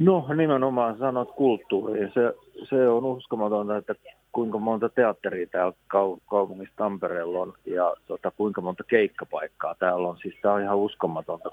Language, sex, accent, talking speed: Finnish, male, native, 140 wpm